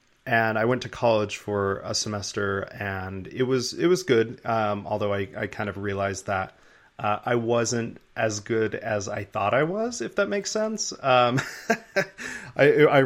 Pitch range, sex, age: 100-115 Hz, male, 30-49